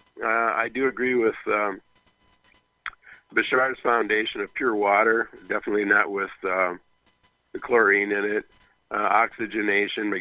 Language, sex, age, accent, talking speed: English, male, 50-69, American, 130 wpm